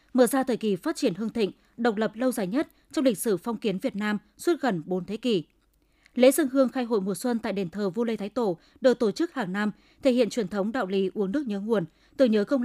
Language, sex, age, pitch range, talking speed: Vietnamese, female, 20-39, 200-255 Hz, 270 wpm